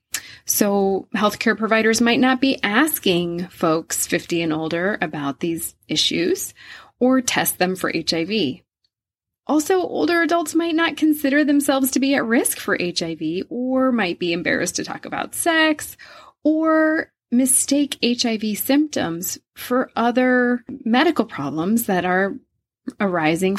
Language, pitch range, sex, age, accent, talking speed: English, 185-270 Hz, female, 20-39, American, 130 wpm